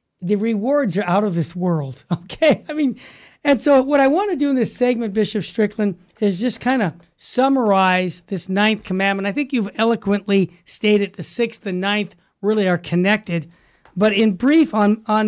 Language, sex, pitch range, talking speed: English, male, 190-245 Hz, 185 wpm